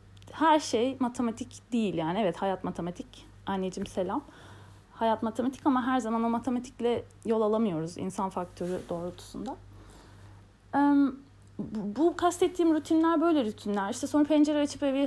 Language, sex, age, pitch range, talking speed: Turkish, female, 30-49, 195-255 Hz, 130 wpm